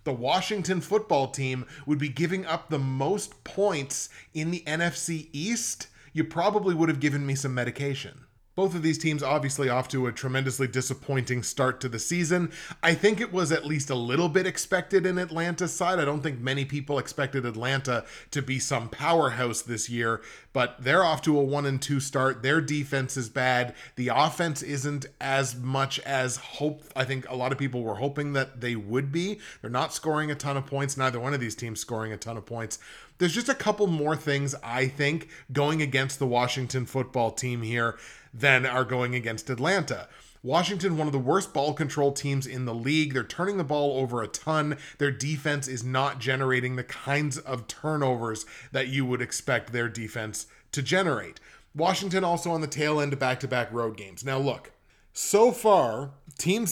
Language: English